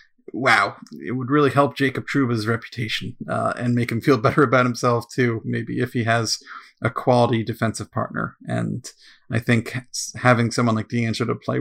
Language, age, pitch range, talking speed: English, 40-59, 115-130 Hz, 175 wpm